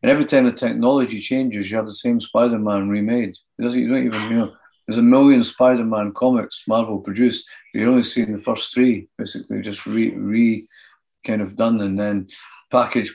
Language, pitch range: English, 105-125 Hz